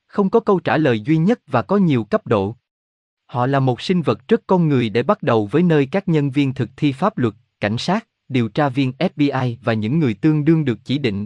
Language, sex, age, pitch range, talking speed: Vietnamese, male, 20-39, 110-155 Hz, 245 wpm